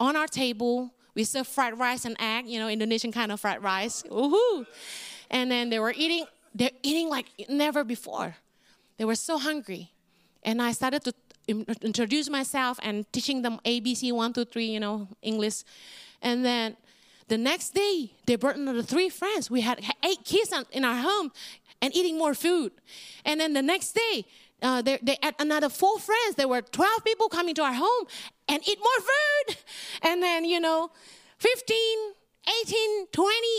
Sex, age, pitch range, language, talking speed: female, 30-49, 230-315 Hz, English, 175 wpm